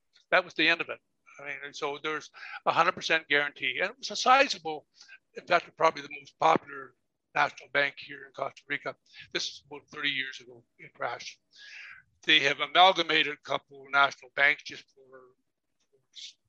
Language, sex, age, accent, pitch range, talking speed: English, male, 60-79, American, 135-170 Hz, 185 wpm